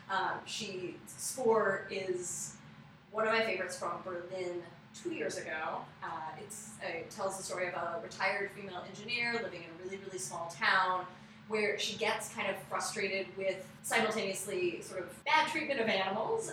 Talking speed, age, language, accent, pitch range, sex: 165 wpm, 20-39, English, American, 175-215 Hz, female